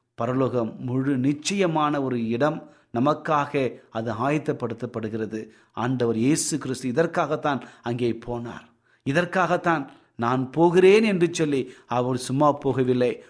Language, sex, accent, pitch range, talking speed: Tamil, male, native, 120-165 Hz, 100 wpm